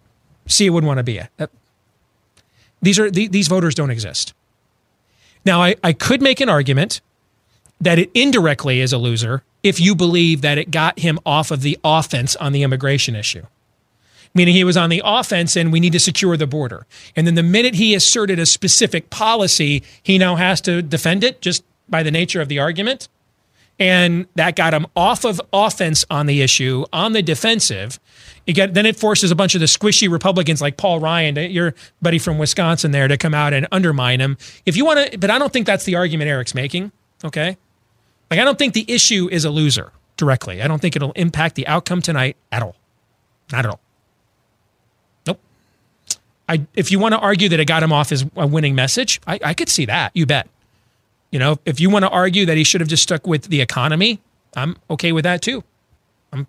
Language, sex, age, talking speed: English, male, 30-49, 210 wpm